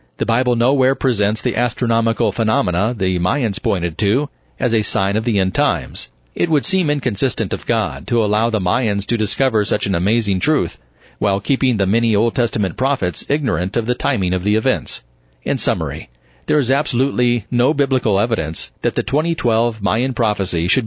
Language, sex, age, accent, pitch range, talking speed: English, male, 40-59, American, 105-125 Hz, 180 wpm